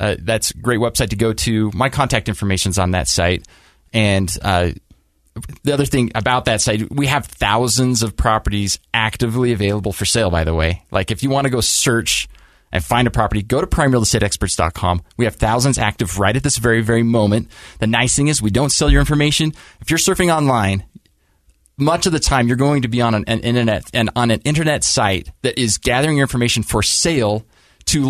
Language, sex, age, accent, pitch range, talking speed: English, male, 20-39, American, 100-125 Hz, 205 wpm